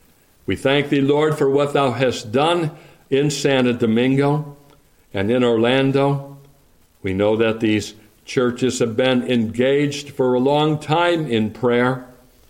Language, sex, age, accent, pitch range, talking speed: English, male, 60-79, American, 100-125 Hz, 140 wpm